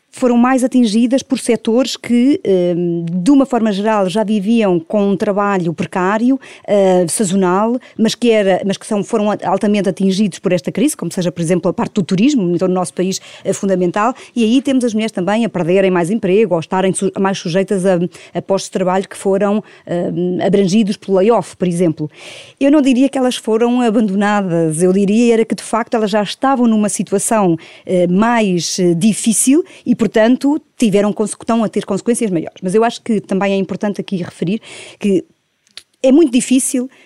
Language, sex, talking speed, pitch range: Portuguese, female, 175 wpm, 190-235 Hz